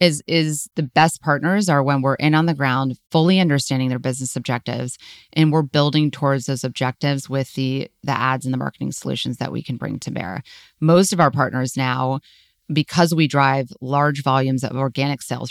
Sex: female